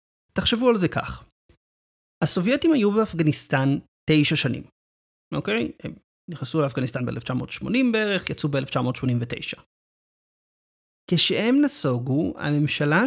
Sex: male